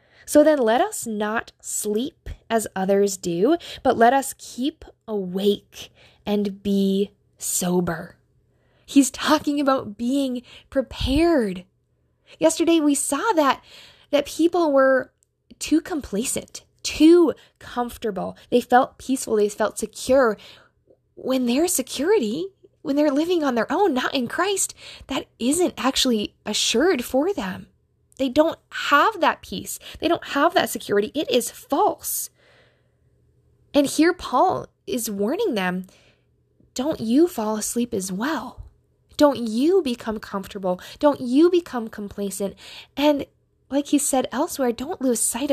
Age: 10-29